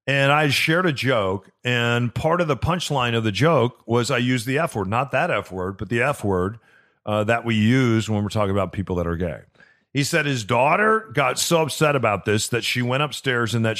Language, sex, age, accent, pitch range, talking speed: English, male, 40-59, American, 115-155 Hz, 235 wpm